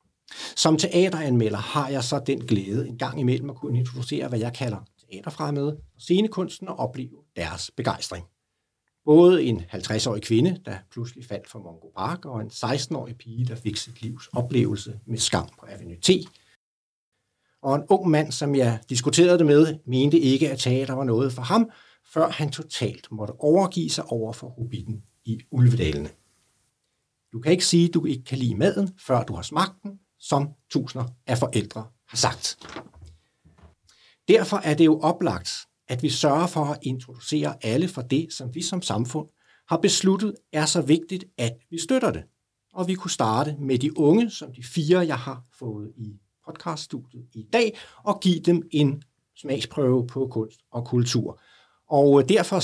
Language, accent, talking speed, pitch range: Danish, native, 170 wpm, 115-160 Hz